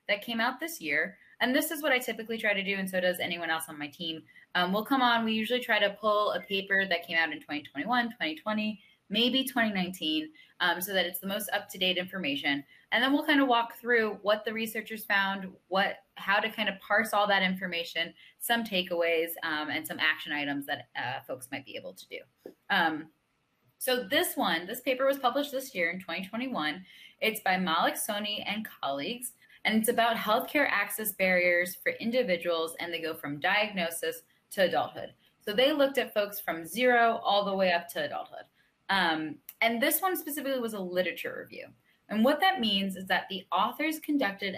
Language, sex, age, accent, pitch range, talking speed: English, female, 10-29, American, 170-235 Hz, 200 wpm